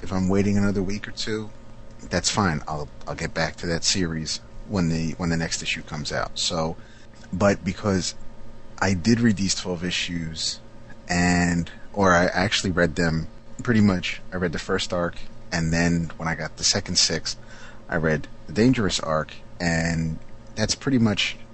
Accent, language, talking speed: American, English, 175 wpm